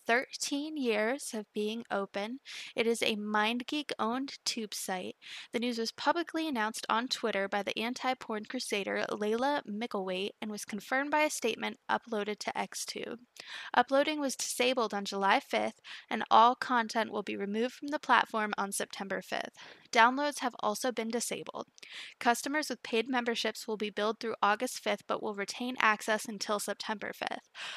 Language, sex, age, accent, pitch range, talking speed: English, female, 10-29, American, 210-255 Hz, 160 wpm